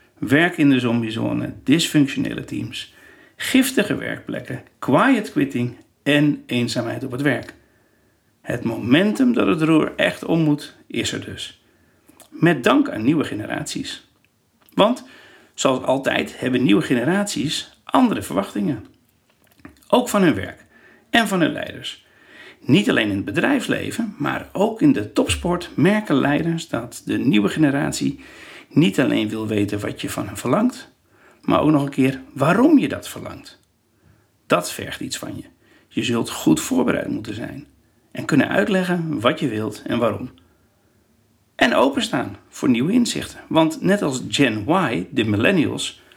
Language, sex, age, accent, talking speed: Dutch, male, 60-79, Dutch, 145 wpm